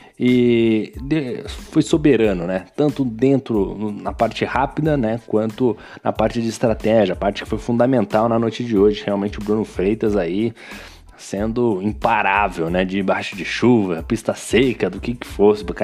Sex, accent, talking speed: male, Brazilian, 155 wpm